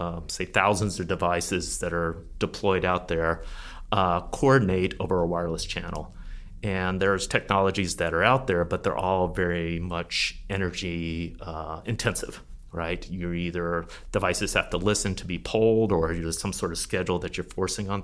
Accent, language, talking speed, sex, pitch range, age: American, English, 170 wpm, male, 85-100 Hz, 30-49